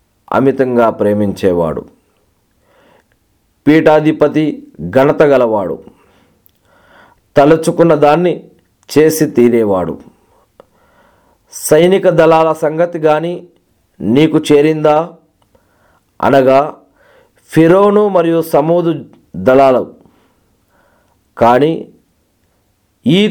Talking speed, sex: 55 wpm, male